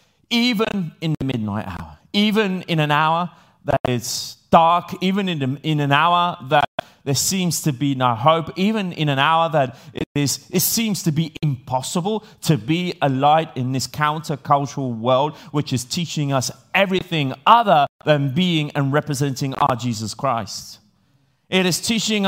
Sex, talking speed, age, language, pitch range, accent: male, 160 wpm, 30-49, Italian, 145-195 Hz, British